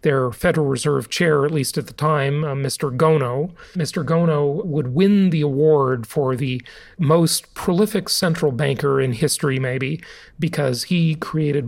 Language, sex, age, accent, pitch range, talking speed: English, male, 40-59, American, 150-200 Hz, 155 wpm